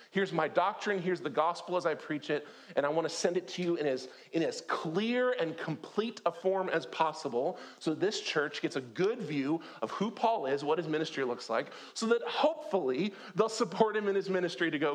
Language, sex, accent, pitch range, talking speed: English, male, American, 150-220 Hz, 225 wpm